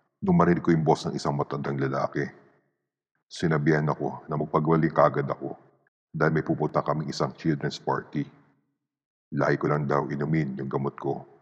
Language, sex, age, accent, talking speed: Filipino, male, 50-69, native, 145 wpm